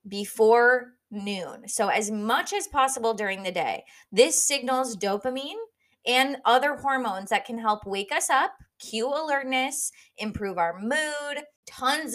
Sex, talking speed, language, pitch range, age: female, 140 wpm, English, 200-260 Hz, 20-39